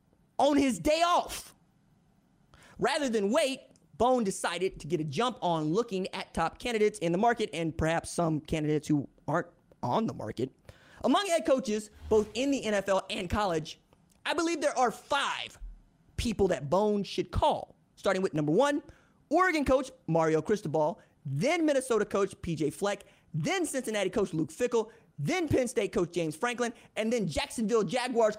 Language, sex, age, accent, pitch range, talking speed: English, male, 30-49, American, 170-245 Hz, 165 wpm